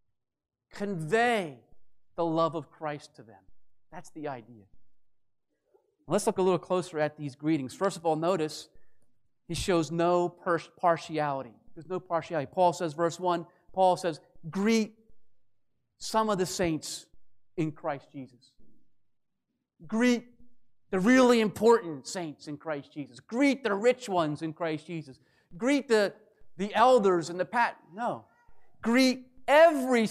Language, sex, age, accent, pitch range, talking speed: English, male, 40-59, American, 165-240 Hz, 135 wpm